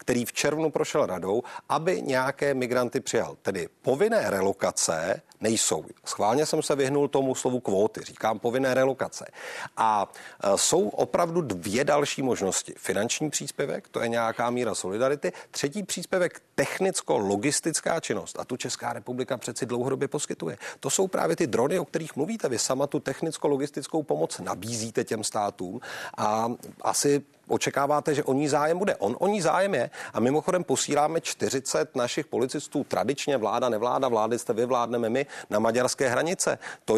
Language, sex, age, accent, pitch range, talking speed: Czech, male, 40-59, native, 125-160 Hz, 145 wpm